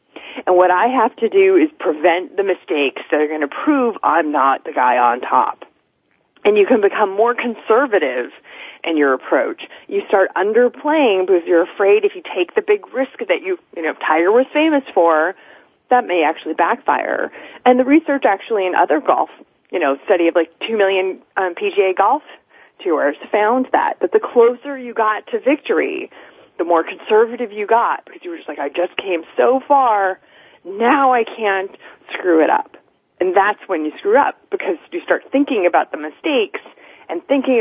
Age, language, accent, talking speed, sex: 30-49, English, American, 190 wpm, female